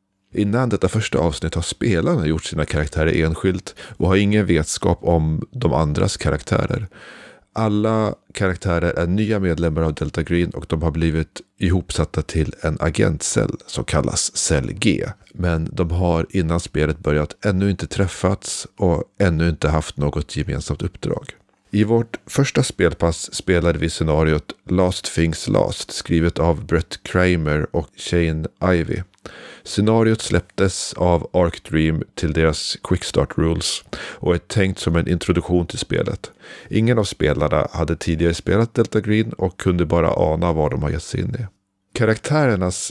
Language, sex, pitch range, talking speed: Swedish, male, 80-95 Hz, 150 wpm